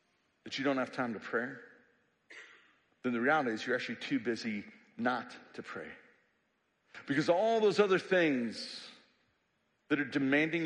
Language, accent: English, American